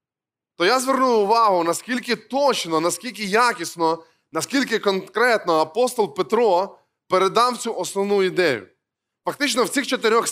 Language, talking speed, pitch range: Ukrainian, 115 wpm, 185-235 Hz